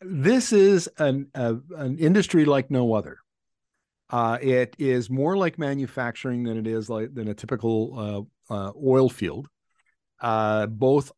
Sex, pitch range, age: male, 110-135 Hz, 50-69